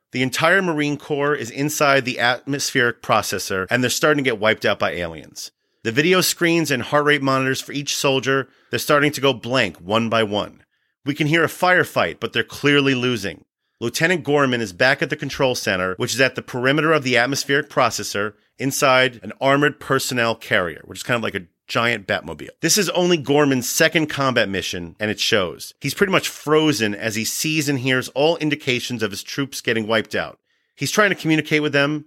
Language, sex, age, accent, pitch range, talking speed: English, male, 40-59, American, 115-150 Hz, 200 wpm